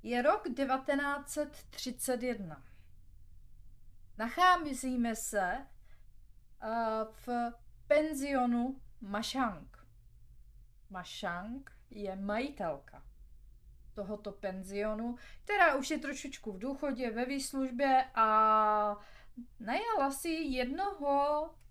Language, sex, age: Czech, female, 30-49